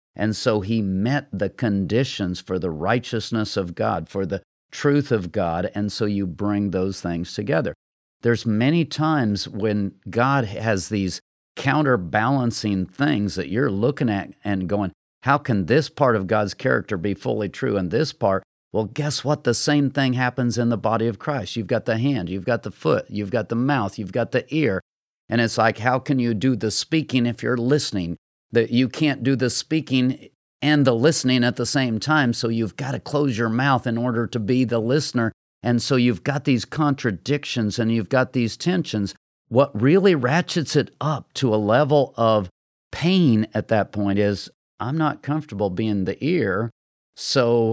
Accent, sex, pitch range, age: American, male, 105-135 Hz, 50-69